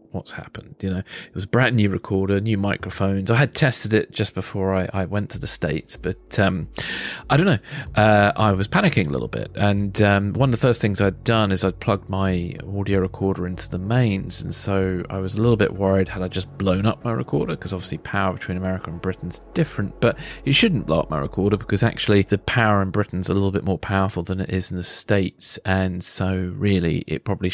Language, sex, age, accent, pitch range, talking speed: English, male, 30-49, British, 95-105 Hz, 230 wpm